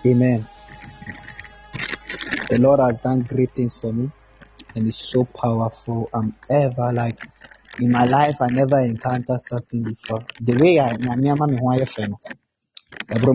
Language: English